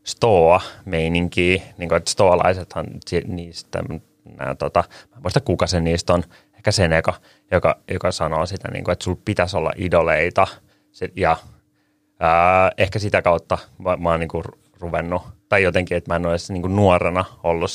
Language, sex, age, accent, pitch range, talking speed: Finnish, male, 30-49, native, 85-95 Hz, 150 wpm